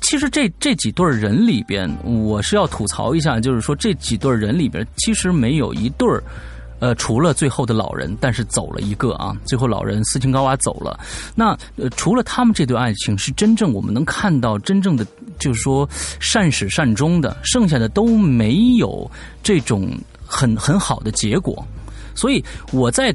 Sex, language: male, French